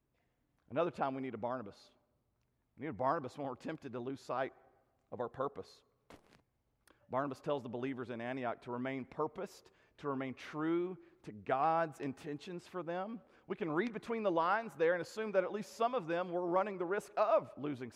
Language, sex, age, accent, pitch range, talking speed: English, male, 40-59, American, 125-185 Hz, 190 wpm